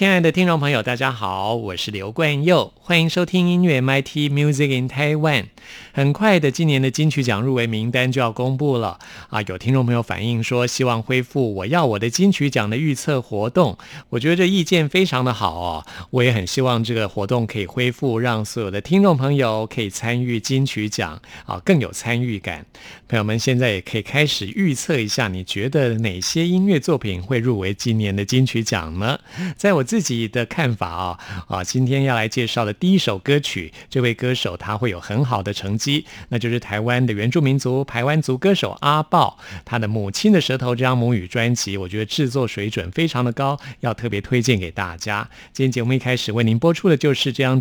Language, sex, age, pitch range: Chinese, male, 50-69, 110-145 Hz